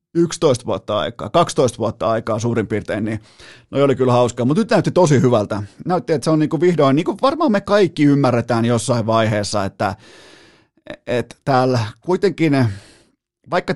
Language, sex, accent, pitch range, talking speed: Finnish, male, native, 110-140 Hz, 165 wpm